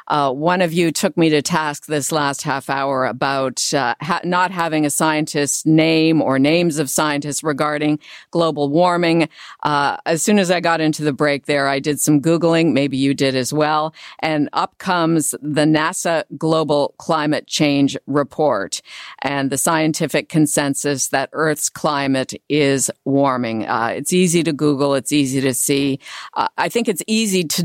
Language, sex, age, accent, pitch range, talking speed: English, female, 50-69, American, 140-165 Hz, 170 wpm